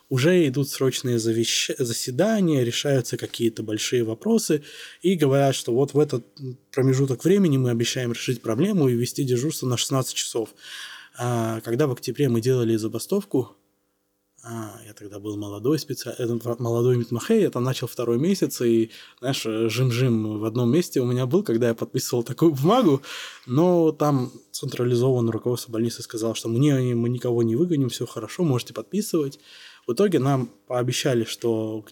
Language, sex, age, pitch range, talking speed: Russian, male, 20-39, 115-140 Hz, 150 wpm